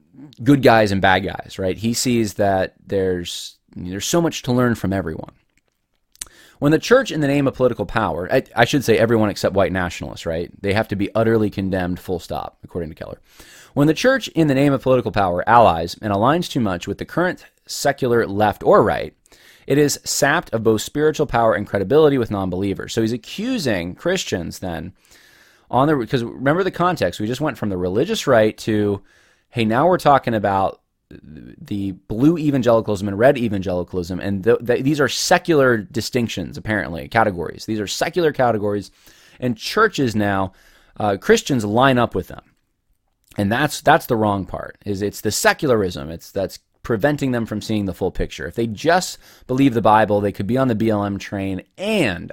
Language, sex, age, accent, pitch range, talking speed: English, male, 20-39, American, 95-130 Hz, 185 wpm